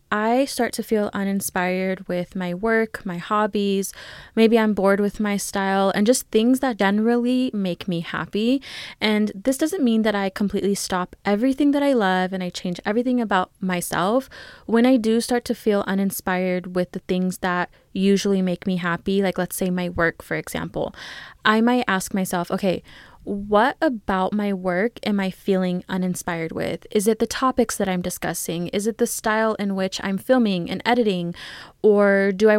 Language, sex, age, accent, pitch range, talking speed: English, female, 20-39, American, 185-220 Hz, 180 wpm